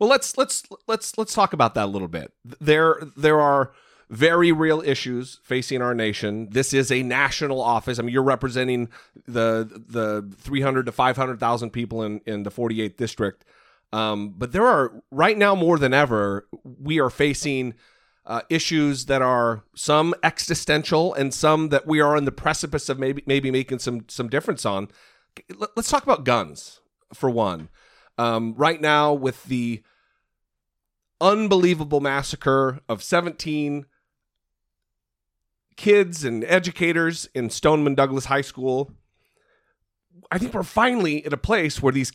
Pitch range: 120-160 Hz